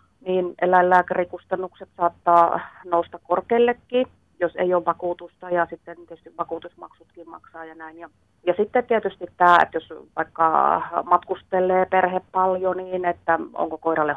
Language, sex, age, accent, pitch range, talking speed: Finnish, female, 30-49, native, 165-195 Hz, 130 wpm